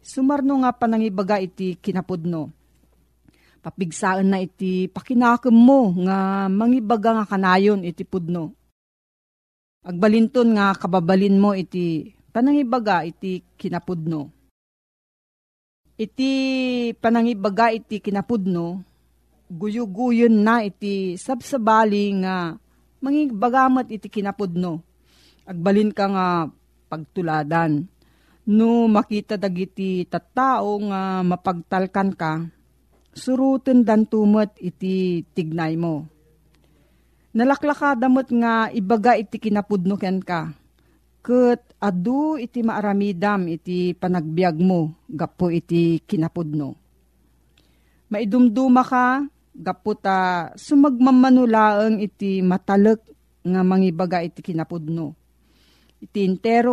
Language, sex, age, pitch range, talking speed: Filipino, female, 40-59, 170-225 Hz, 85 wpm